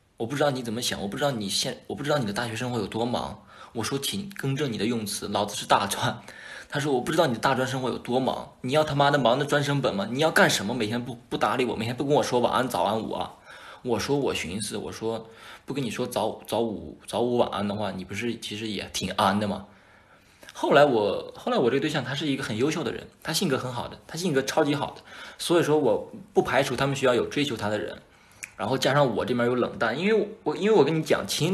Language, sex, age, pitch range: Chinese, male, 20-39, 110-140 Hz